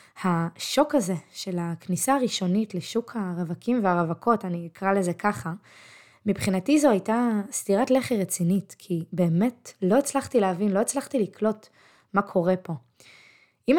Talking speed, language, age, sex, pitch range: 130 wpm, Hebrew, 20-39, female, 180-235 Hz